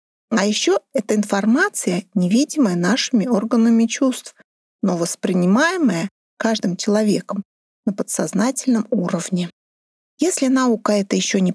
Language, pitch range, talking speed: Russian, 195-250 Hz, 105 wpm